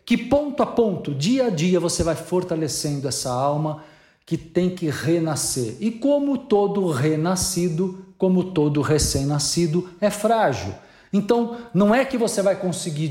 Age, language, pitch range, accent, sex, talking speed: 50-69, Portuguese, 145-185 Hz, Brazilian, male, 145 wpm